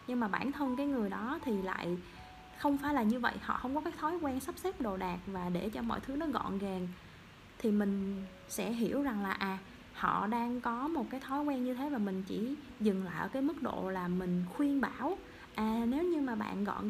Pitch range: 200-275 Hz